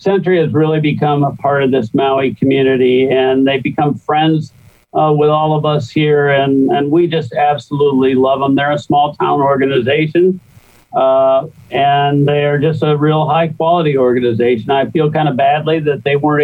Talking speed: 185 wpm